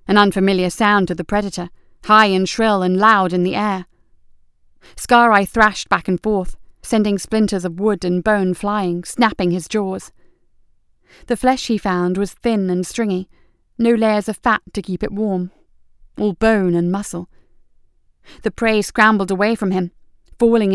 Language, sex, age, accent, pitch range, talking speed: English, female, 30-49, British, 180-210 Hz, 160 wpm